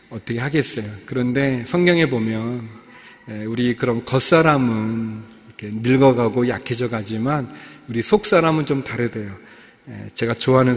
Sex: male